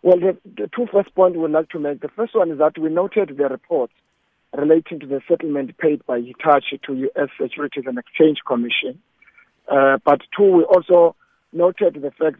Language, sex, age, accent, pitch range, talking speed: English, male, 50-69, South African, 140-170 Hz, 195 wpm